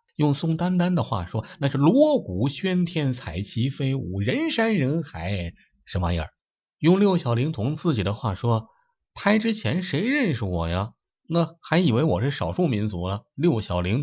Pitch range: 95-145 Hz